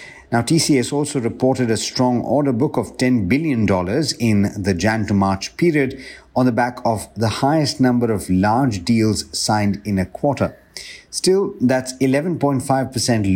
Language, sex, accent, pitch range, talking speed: English, male, Indian, 100-130 Hz, 155 wpm